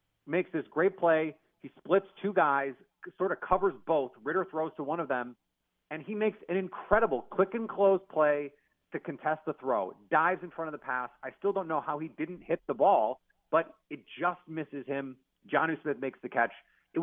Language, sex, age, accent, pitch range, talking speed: English, male, 30-49, American, 145-195 Hz, 205 wpm